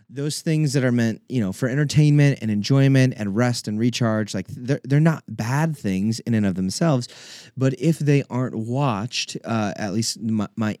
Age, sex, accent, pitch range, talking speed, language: 30-49, male, American, 105-130 Hz, 195 wpm, English